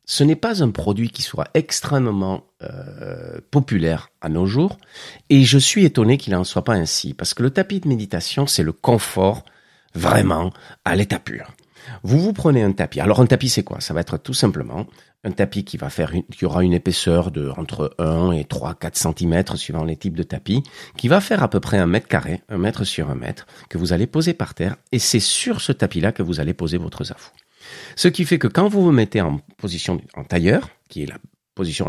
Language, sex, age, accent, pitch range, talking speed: French, male, 50-69, French, 85-130 Hz, 220 wpm